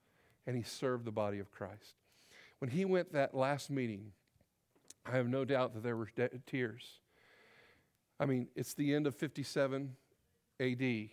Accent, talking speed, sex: American, 155 wpm, male